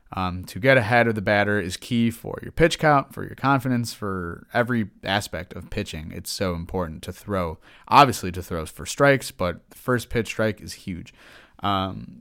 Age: 20-39